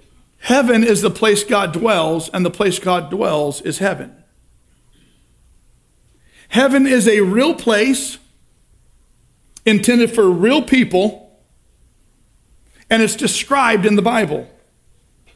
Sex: male